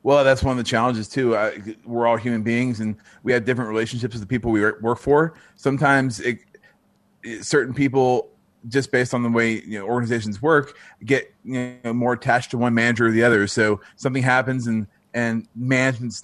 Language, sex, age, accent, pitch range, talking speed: English, male, 30-49, American, 110-130 Hz, 175 wpm